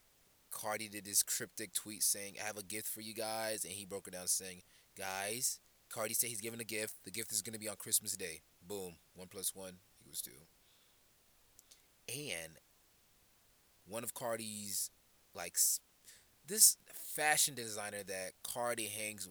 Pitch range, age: 95-115 Hz, 20-39